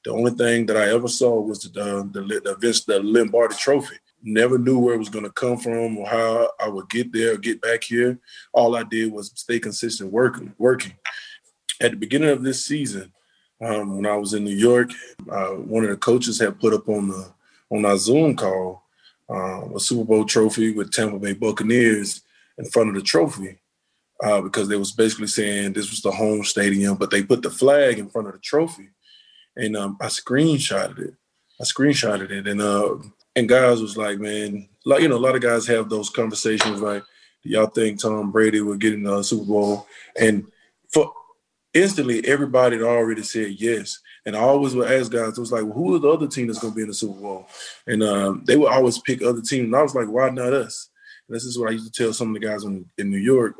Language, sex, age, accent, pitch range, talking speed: English, male, 20-39, American, 105-120 Hz, 225 wpm